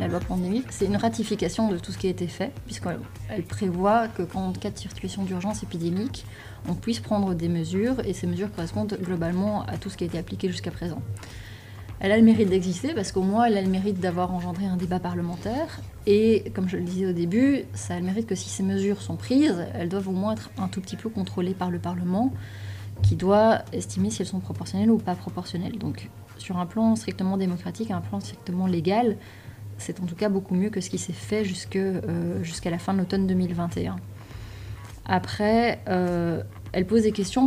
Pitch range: 170-205 Hz